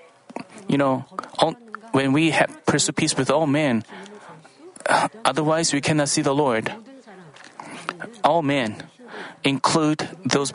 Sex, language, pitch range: male, Korean, 140-165 Hz